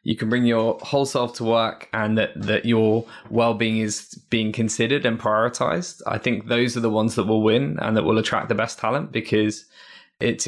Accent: British